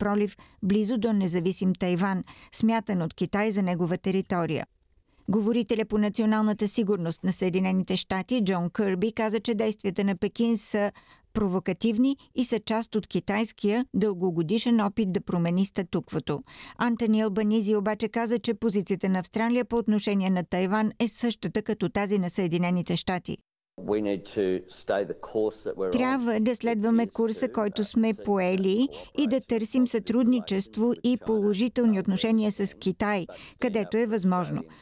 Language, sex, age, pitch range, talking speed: Bulgarian, female, 50-69, 190-230 Hz, 130 wpm